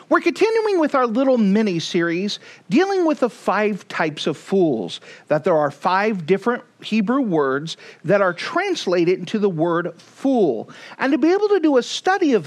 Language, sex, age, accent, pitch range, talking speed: English, male, 40-59, American, 165-260 Hz, 175 wpm